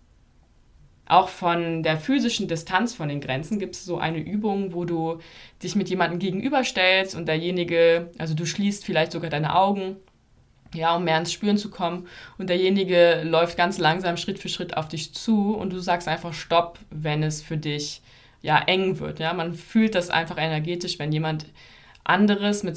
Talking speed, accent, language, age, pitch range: 170 wpm, German, German, 20-39, 155-185 Hz